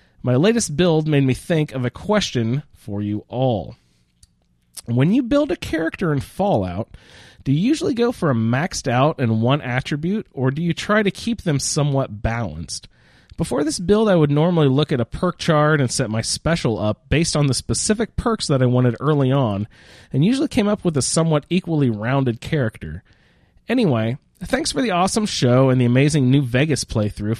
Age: 30-49